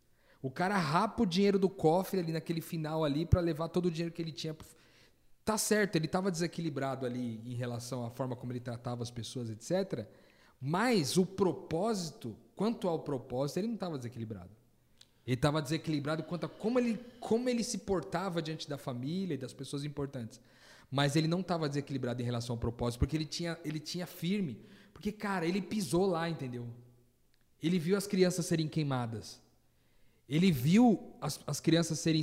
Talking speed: 180 wpm